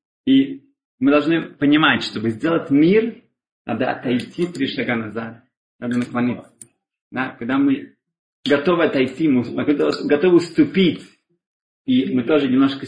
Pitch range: 125-195 Hz